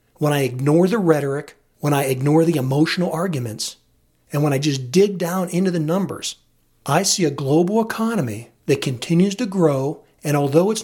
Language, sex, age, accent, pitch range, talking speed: English, male, 40-59, American, 145-190 Hz, 175 wpm